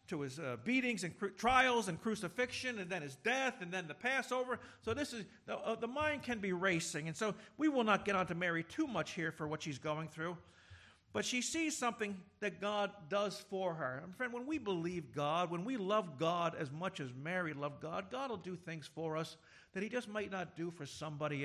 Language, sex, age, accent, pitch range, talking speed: English, male, 50-69, American, 160-225 Hz, 230 wpm